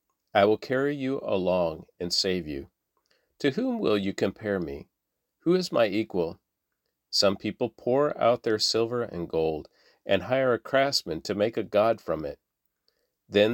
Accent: American